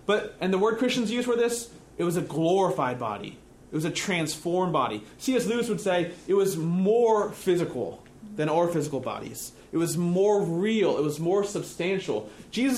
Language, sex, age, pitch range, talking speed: English, male, 30-49, 165-215 Hz, 185 wpm